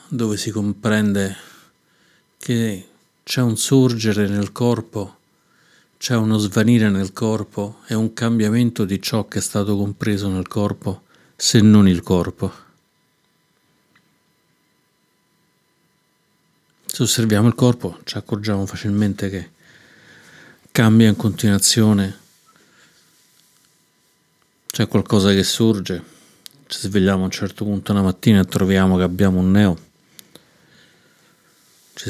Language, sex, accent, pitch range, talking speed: Italian, male, native, 95-110 Hz, 110 wpm